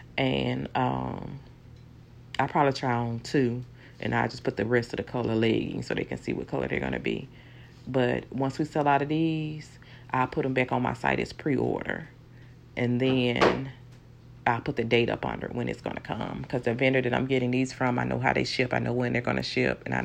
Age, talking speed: 40-59, 235 wpm